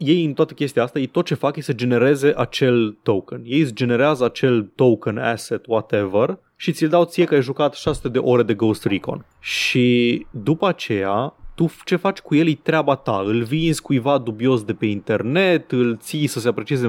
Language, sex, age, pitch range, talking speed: Romanian, male, 20-39, 120-165 Hz, 200 wpm